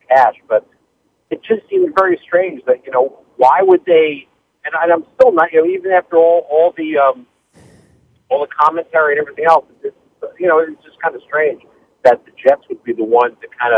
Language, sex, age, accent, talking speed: English, male, 50-69, American, 210 wpm